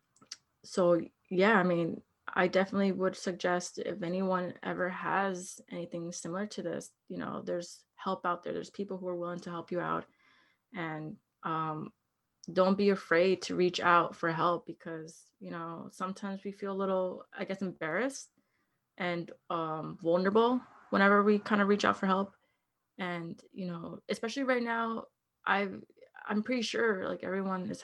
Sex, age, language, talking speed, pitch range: female, 20-39, English, 160 wpm, 175-200 Hz